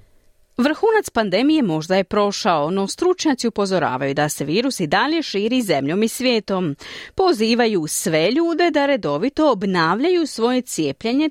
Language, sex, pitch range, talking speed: Croatian, female, 185-265 Hz, 135 wpm